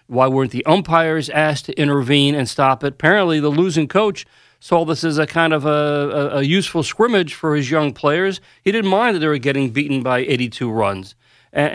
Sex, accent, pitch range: male, American, 135-185 Hz